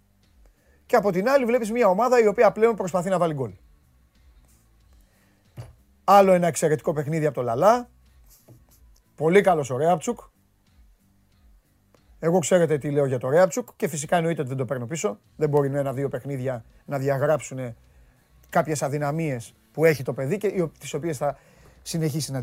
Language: Greek